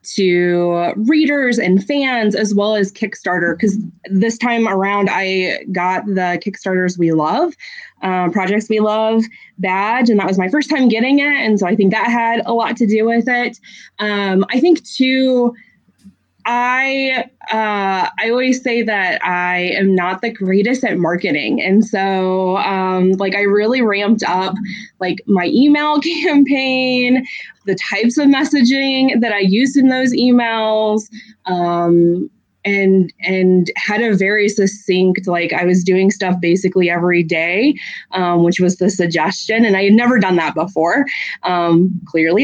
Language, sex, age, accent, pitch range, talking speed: English, female, 20-39, American, 180-235 Hz, 155 wpm